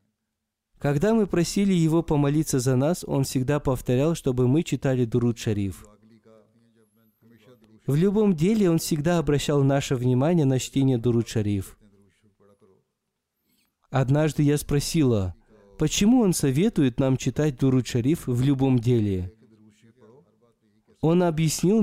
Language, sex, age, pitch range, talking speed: Russian, male, 20-39, 110-150 Hz, 105 wpm